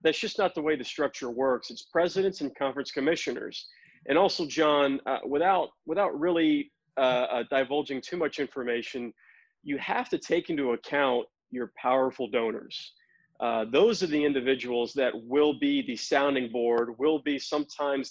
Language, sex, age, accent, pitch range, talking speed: English, male, 40-59, American, 120-150 Hz, 160 wpm